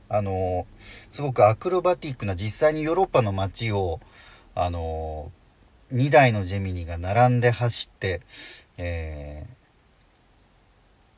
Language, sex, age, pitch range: Japanese, male, 40-59, 95-130 Hz